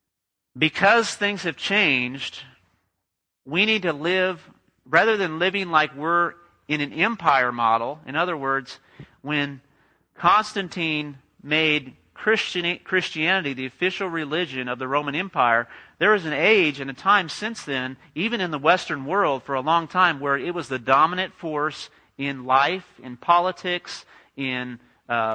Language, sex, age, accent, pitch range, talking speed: English, male, 40-59, American, 135-175 Hz, 145 wpm